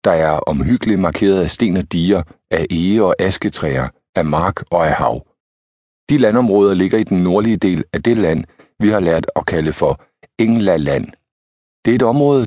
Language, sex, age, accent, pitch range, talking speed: Danish, male, 50-69, native, 85-120 Hz, 190 wpm